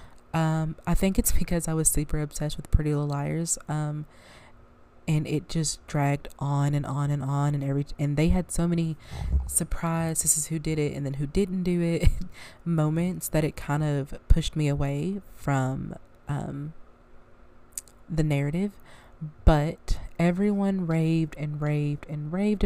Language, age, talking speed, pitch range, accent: English, 20-39, 160 wpm, 150-180 Hz, American